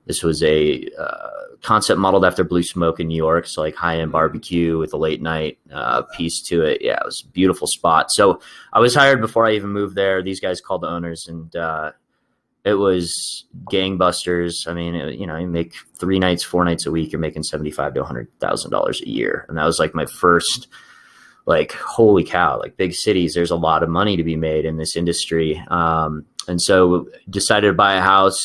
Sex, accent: male, American